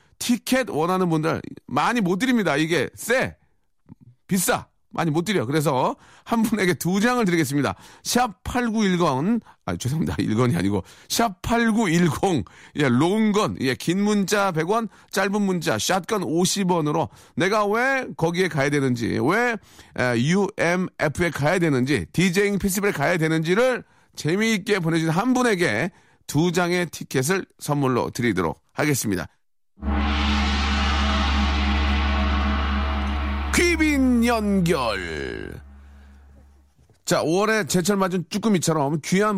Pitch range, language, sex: 125-195 Hz, Korean, male